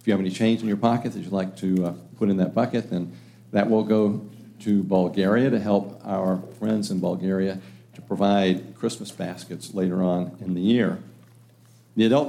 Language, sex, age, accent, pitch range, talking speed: English, male, 50-69, American, 95-120 Hz, 195 wpm